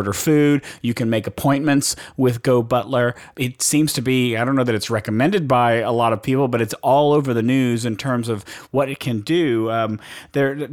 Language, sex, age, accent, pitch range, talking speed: English, male, 40-59, American, 115-135 Hz, 215 wpm